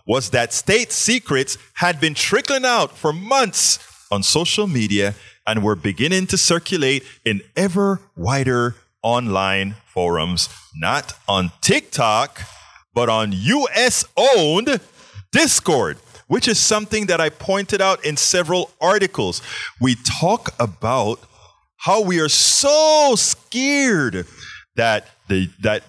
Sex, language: male, English